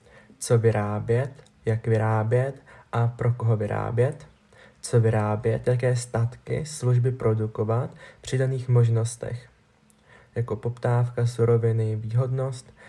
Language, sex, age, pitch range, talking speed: Czech, male, 20-39, 115-125 Hz, 100 wpm